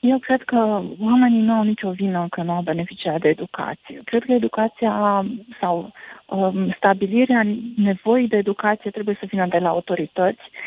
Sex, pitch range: female, 190-220 Hz